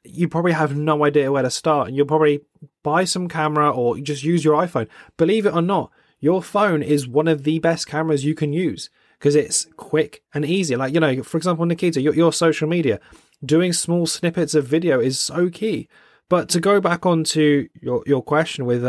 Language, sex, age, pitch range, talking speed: English, male, 20-39, 145-170 Hz, 210 wpm